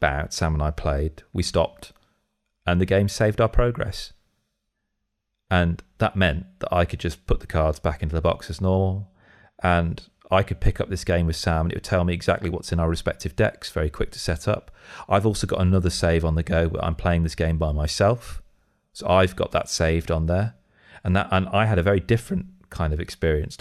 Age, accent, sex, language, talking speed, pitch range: 30-49, British, male, English, 215 wpm, 80-95 Hz